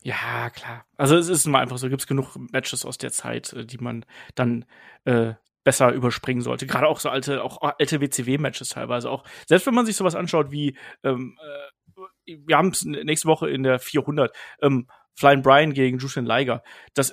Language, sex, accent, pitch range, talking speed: German, male, German, 135-180 Hz, 190 wpm